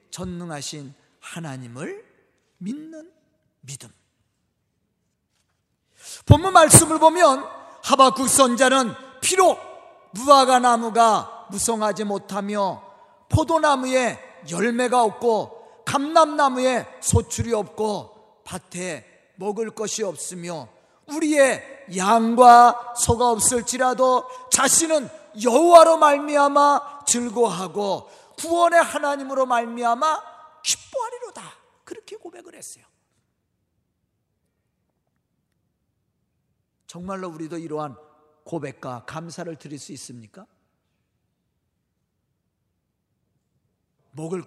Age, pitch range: 40-59, 170-285 Hz